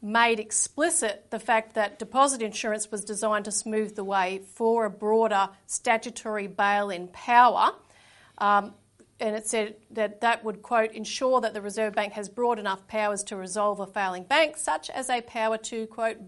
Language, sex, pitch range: English, female, 210-240 Hz